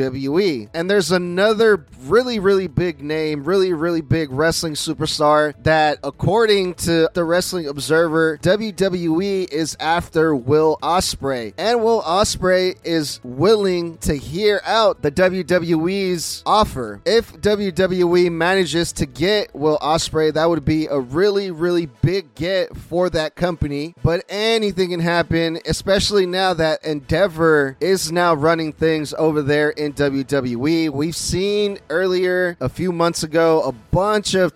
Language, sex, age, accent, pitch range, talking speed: English, male, 20-39, American, 150-185 Hz, 135 wpm